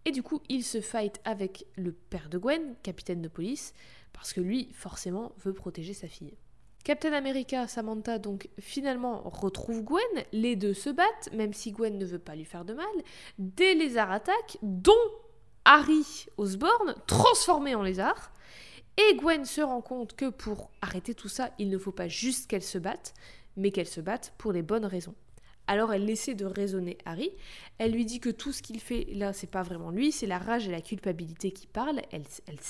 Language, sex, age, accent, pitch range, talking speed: French, female, 20-39, French, 190-255 Hz, 195 wpm